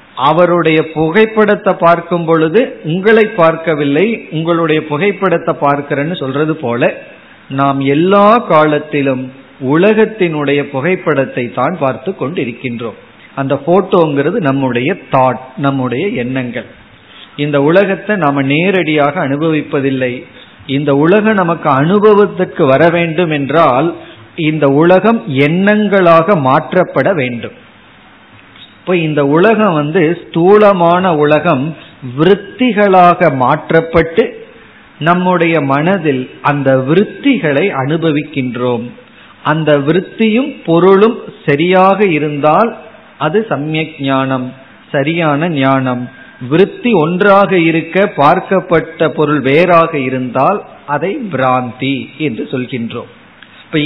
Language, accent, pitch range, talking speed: Tamil, native, 140-185 Hz, 85 wpm